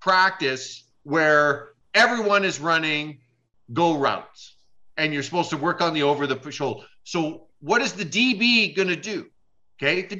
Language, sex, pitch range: English, male, 170-245 Hz